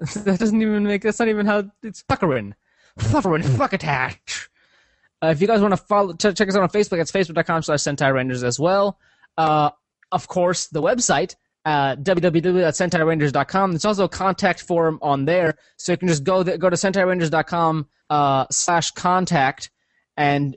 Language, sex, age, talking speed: English, male, 20-39, 170 wpm